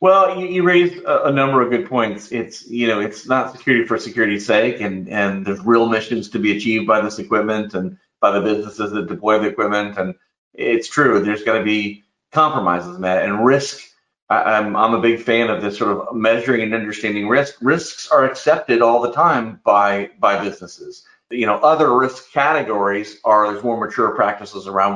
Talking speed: 200 wpm